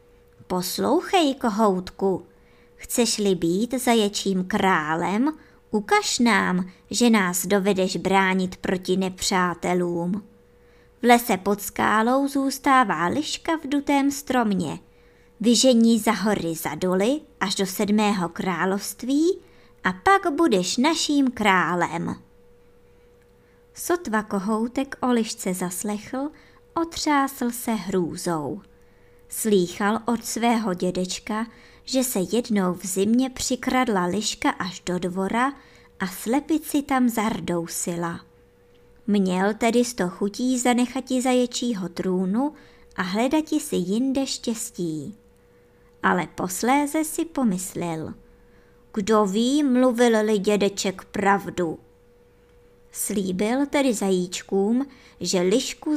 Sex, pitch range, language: male, 185-255 Hz, Czech